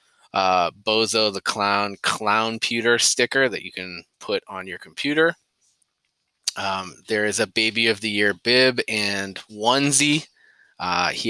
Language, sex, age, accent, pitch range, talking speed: English, male, 20-39, American, 95-115 Hz, 145 wpm